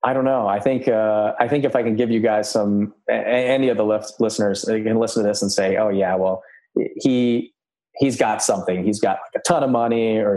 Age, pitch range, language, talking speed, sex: 30-49, 100-115 Hz, English, 230 wpm, male